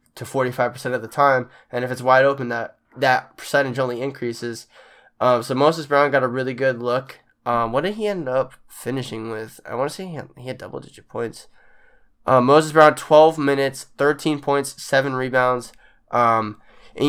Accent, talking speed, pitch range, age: American, 185 wpm, 120-140 Hz, 10-29